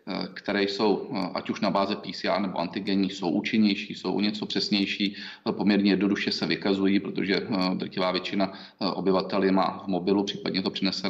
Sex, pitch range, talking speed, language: male, 95-105 Hz, 155 wpm, Czech